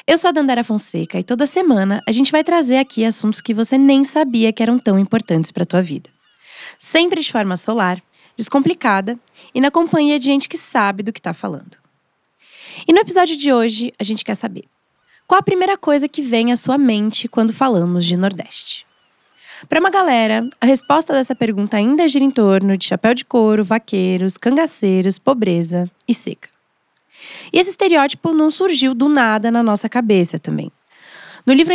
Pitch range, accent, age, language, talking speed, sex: 195-280 Hz, Brazilian, 20-39, Portuguese, 180 wpm, female